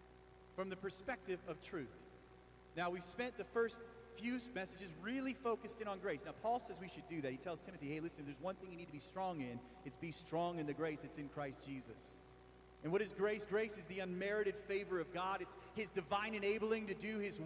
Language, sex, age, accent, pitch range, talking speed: English, male, 40-59, American, 130-205 Hz, 225 wpm